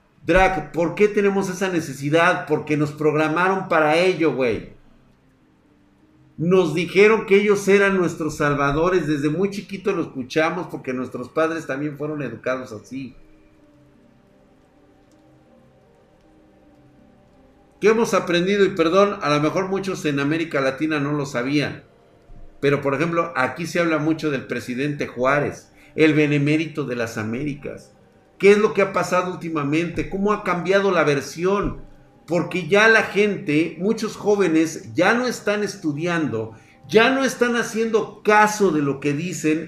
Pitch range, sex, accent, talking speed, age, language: 140-190 Hz, male, Mexican, 140 wpm, 50-69, Spanish